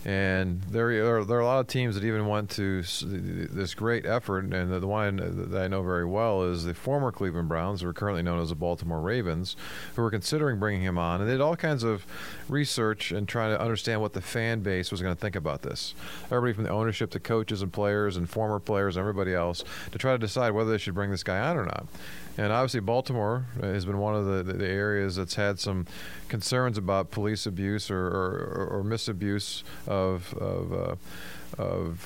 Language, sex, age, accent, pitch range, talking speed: English, male, 40-59, American, 95-115 Hz, 225 wpm